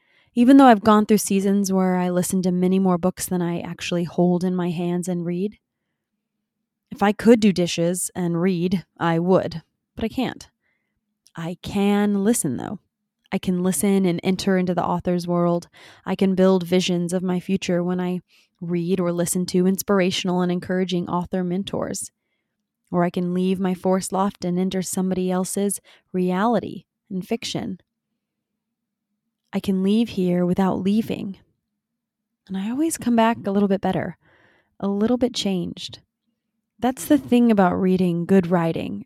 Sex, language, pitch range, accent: female, English, 180-215 Hz, American